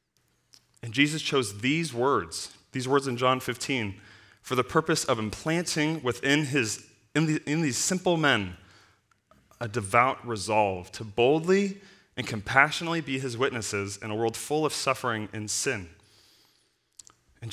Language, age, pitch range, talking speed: English, 20-39, 105-140 Hz, 145 wpm